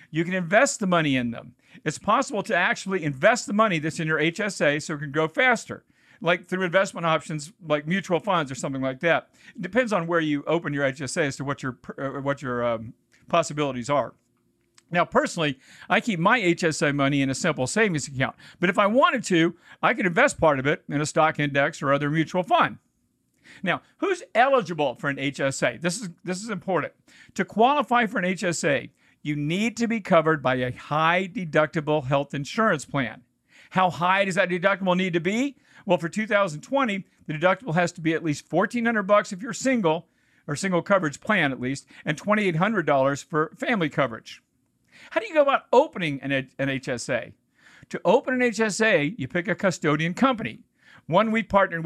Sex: male